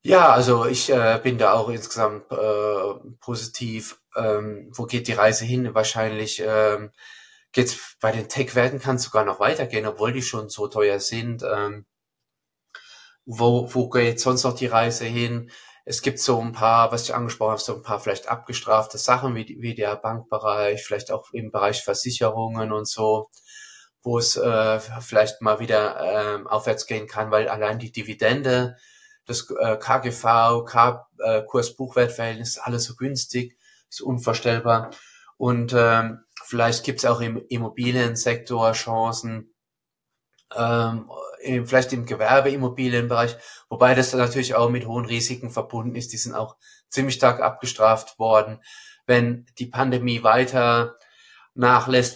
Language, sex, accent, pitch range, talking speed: German, male, German, 110-125 Hz, 145 wpm